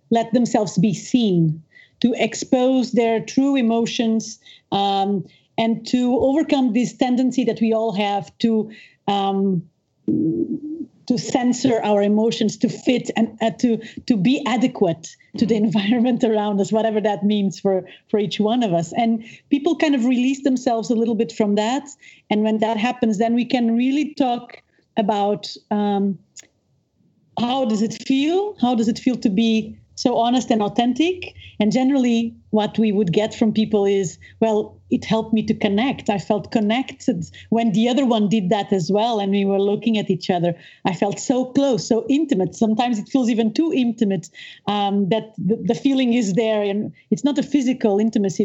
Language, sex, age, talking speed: English, female, 40-59, 175 wpm